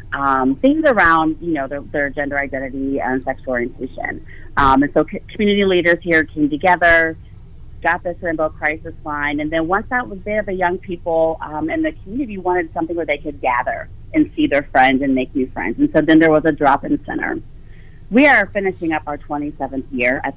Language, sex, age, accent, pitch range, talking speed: English, female, 30-49, American, 140-180 Hz, 200 wpm